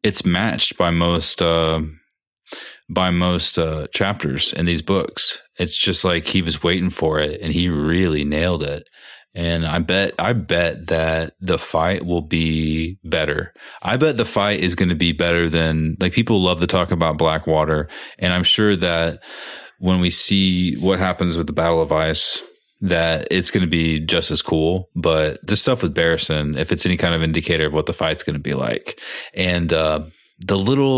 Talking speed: 190 wpm